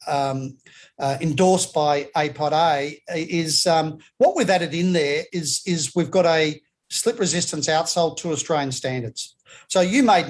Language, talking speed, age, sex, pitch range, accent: English, 150 wpm, 50-69, male, 145-175 Hz, Australian